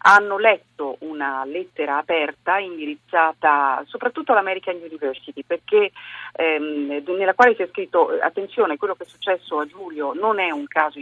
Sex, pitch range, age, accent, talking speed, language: female, 145-230 Hz, 40-59, native, 145 wpm, Italian